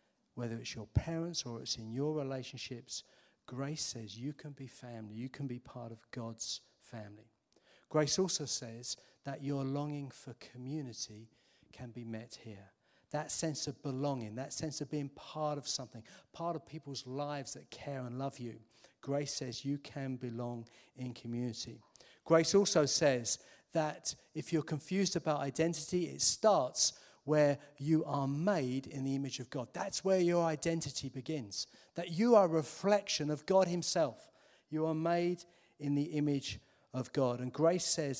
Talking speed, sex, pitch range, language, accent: 165 wpm, male, 125-155 Hz, English, British